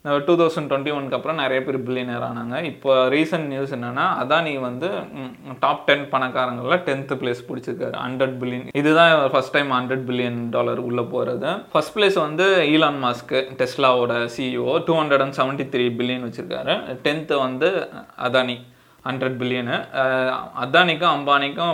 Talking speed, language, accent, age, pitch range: 135 wpm, Tamil, native, 20-39, 125-150 Hz